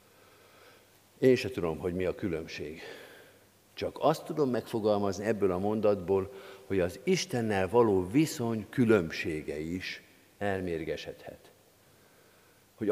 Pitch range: 100-130 Hz